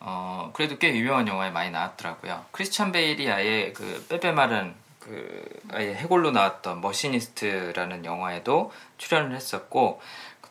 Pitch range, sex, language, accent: 105-160 Hz, male, Korean, native